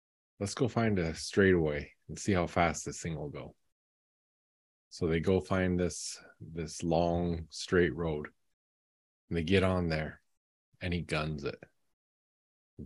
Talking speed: 150 wpm